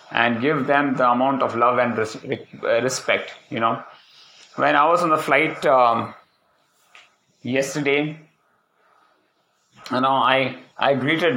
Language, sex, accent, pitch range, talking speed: English, male, Indian, 120-140 Hz, 125 wpm